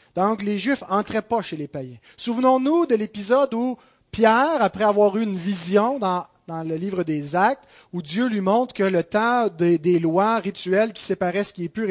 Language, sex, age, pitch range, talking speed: French, male, 30-49, 170-220 Hz, 205 wpm